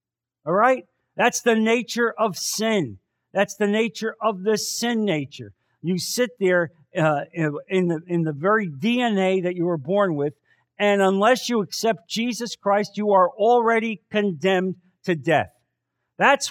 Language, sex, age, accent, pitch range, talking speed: English, male, 50-69, American, 120-175 Hz, 150 wpm